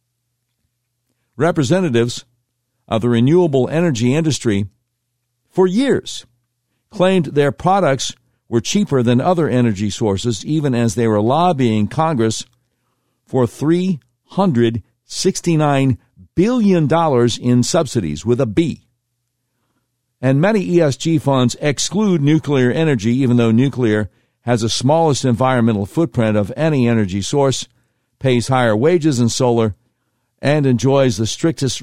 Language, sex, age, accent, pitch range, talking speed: English, male, 60-79, American, 115-135 Hz, 110 wpm